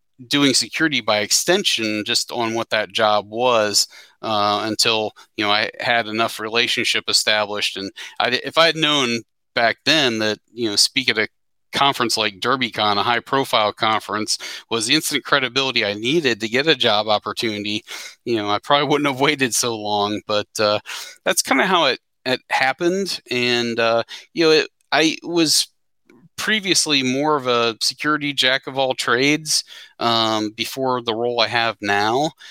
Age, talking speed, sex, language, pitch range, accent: 40-59, 170 wpm, male, English, 110-130 Hz, American